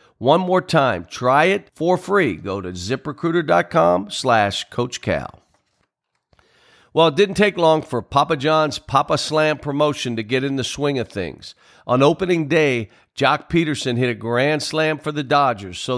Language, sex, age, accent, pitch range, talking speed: English, male, 50-69, American, 120-155 Hz, 160 wpm